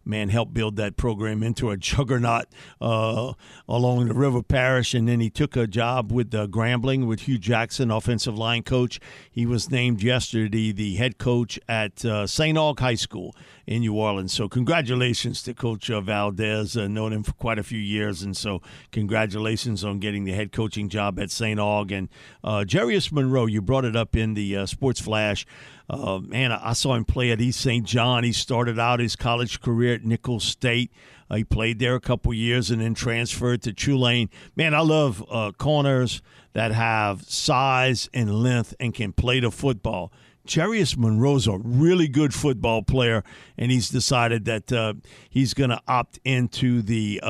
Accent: American